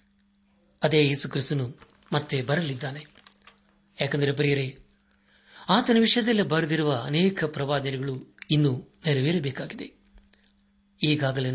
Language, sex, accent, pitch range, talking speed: Kannada, male, native, 130-165 Hz, 75 wpm